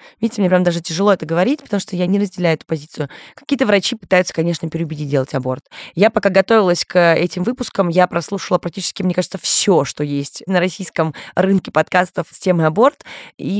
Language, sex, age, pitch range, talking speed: Russian, female, 20-39, 160-200 Hz, 190 wpm